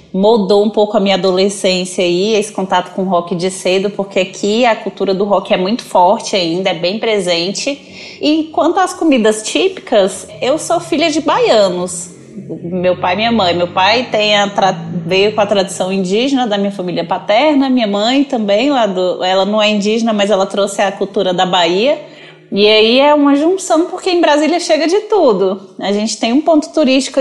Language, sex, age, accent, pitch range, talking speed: Portuguese, female, 20-39, Brazilian, 190-260 Hz, 195 wpm